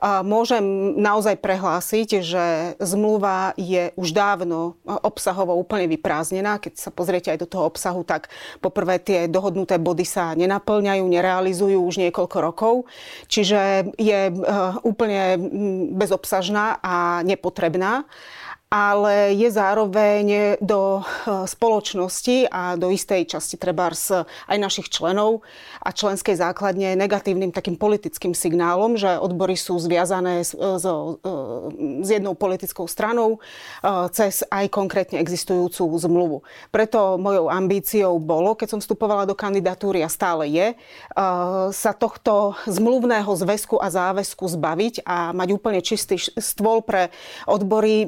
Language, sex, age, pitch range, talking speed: Slovak, female, 30-49, 180-210 Hz, 115 wpm